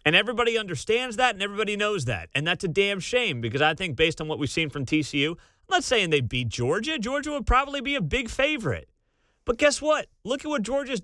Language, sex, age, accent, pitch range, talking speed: English, male, 30-49, American, 135-215 Hz, 235 wpm